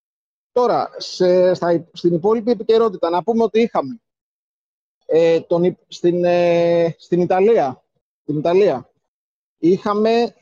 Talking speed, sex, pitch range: 110 wpm, male, 170-200 Hz